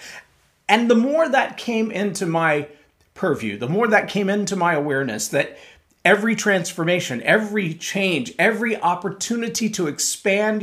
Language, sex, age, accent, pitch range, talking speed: English, male, 40-59, American, 145-215 Hz, 135 wpm